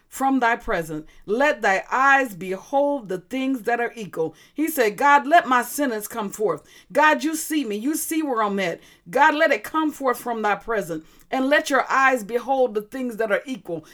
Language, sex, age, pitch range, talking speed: English, female, 40-59, 220-285 Hz, 200 wpm